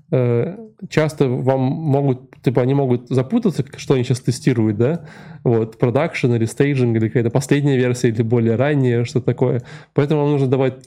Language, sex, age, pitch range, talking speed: Russian, male, 20-39, 120-145 Hz, 160 wpm